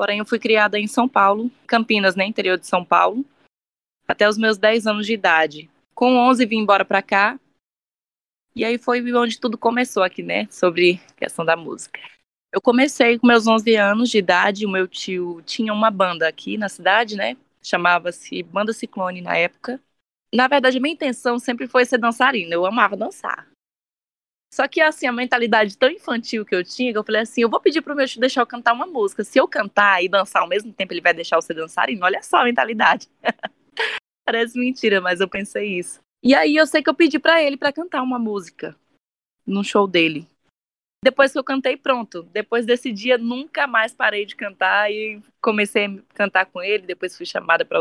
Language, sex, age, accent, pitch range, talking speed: Portuguese, female, 20-39, Brazilian, 195-250 Hz, 205 wpm